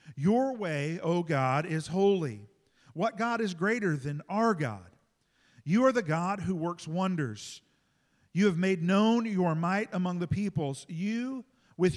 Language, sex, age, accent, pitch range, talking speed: English, male, 50-69, American, 125-175 Hz, 155 wpm